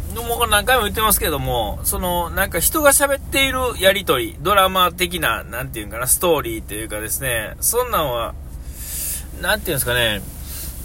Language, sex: Japanese, male